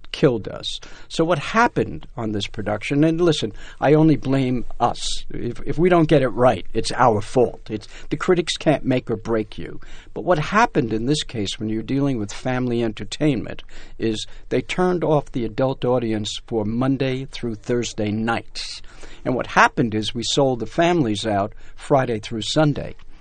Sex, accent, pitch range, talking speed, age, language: male, American, 110-150 Hz, 175 wpm, 60-79, English